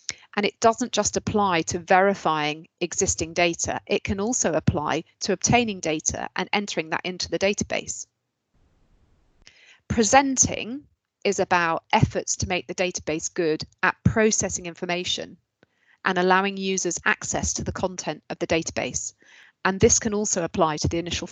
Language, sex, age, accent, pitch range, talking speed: English, female, 30-49, British, 170-210 Hz, 145 wpm